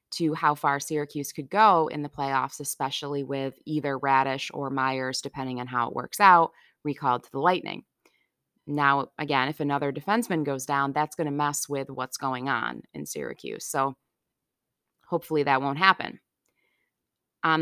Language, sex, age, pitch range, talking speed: English, female, 20-39, 140-160 Hz, 165 wpm